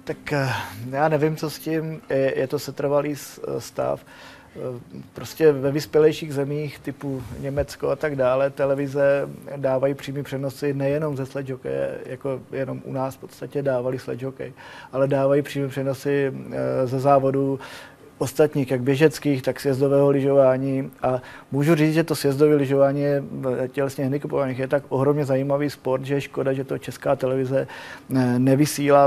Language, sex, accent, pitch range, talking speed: Czech, male, native, 130-145 Hz, 140 wpm